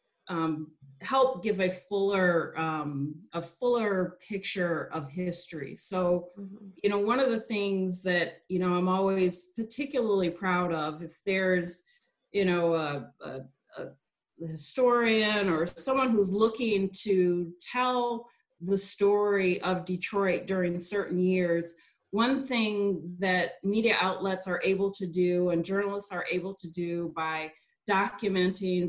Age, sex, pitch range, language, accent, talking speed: 30-49, female, 175-200 Hz, English, American, 130 wpm